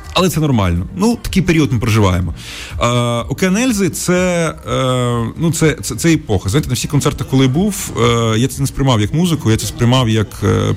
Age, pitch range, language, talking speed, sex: 30-49, 100-135 Hz, Ukrainian, 205 wpm, male